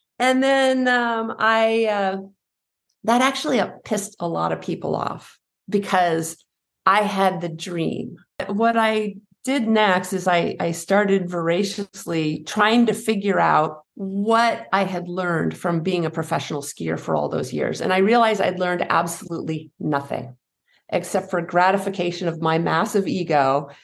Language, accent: English, American